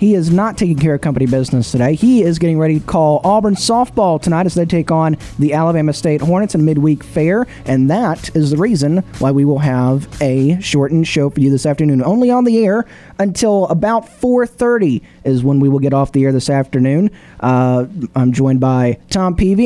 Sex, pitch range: male, 140-185 Hz